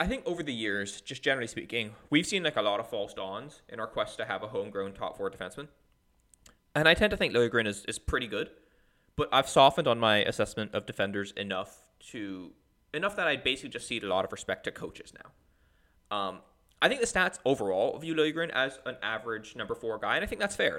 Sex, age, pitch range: male, 20-39, 105-160 Hz